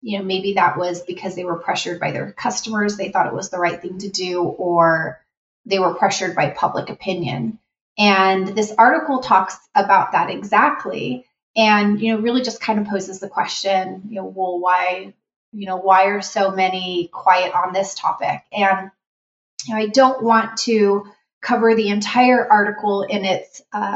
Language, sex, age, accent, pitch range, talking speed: English, female, 30-49, American, 185-215 Hz, 185 wpm